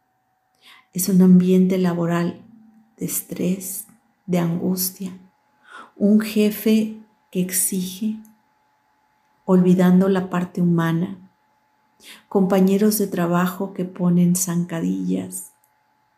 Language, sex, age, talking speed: Spanish, female, 50-69, 80 wpm